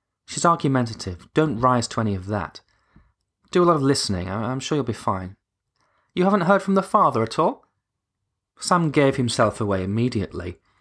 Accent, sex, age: British, male, 30-49